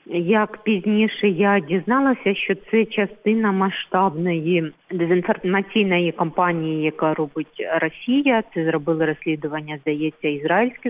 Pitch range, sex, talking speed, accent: 160-195 Hz, female, 100 wpm, native